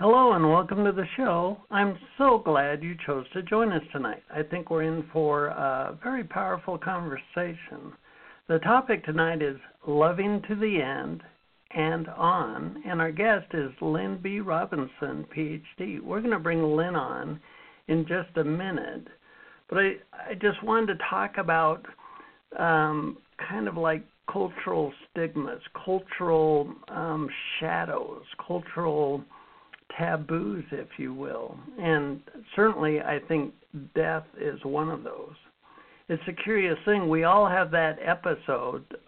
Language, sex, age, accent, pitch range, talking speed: English, male, 60-79, American, 155-195 Hz, 140 wpm